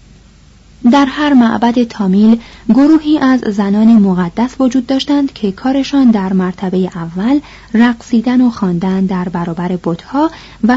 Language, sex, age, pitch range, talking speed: Persian, female, 30-49, 195-255 Hz, 125 wpm